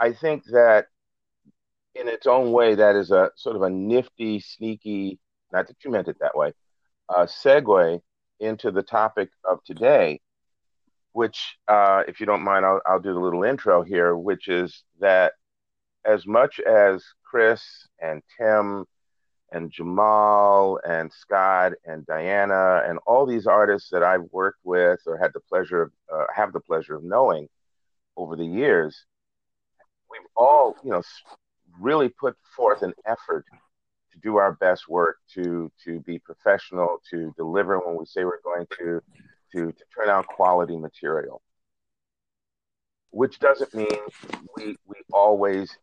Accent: American